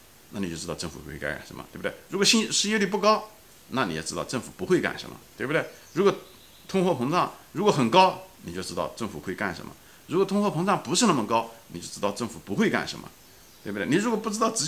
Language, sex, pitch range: Chinese, male, 90-155 Hz